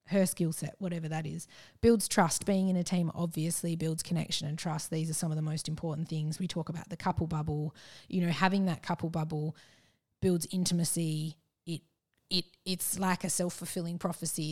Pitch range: 155-175 Hz